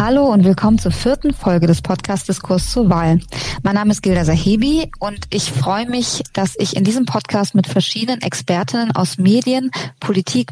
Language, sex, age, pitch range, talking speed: German, female, 20-39, 180-220 Hz, 175 wpm